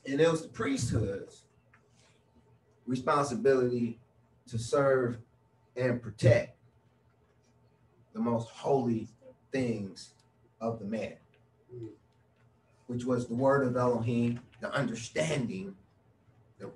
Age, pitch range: 30-49, 110-120 Hz